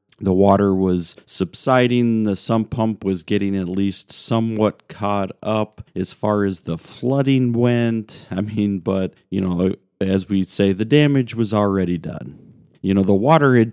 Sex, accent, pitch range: male, American, 95-110 Hz